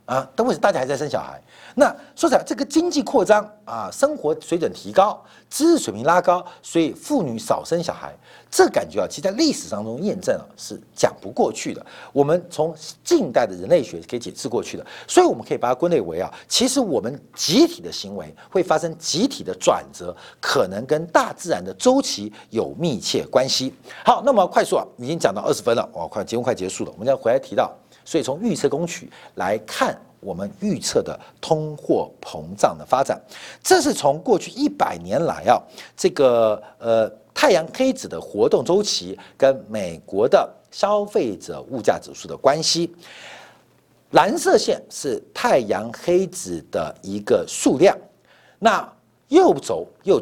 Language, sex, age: Chinese, male, 50-69